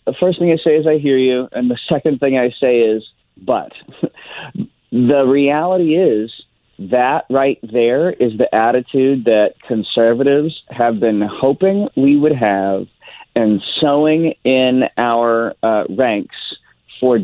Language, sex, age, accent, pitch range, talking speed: English, male, 40-59, American, 115-150 Hz, 145 wpm